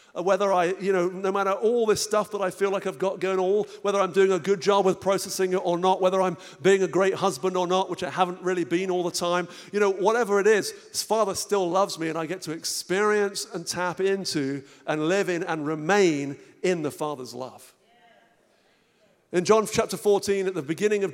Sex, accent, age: male, British, 50-69